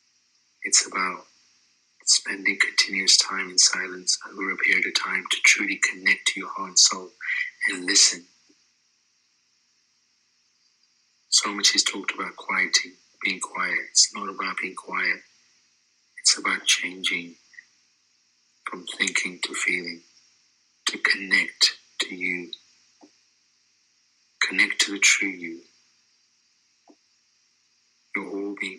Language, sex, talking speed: English, male, 110 wpm